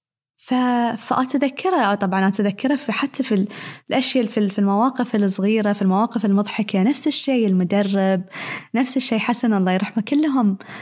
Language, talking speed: Arabic, 130 wpm